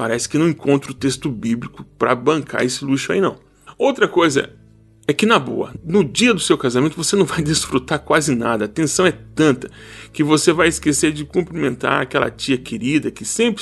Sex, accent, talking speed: male, Brazilian, 205 wpm